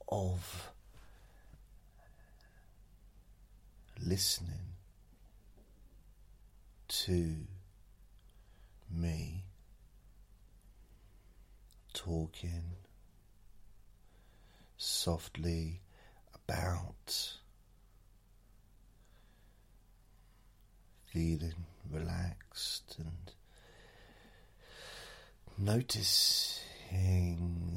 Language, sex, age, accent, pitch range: English, male, 40-59, British, 90-105 Hz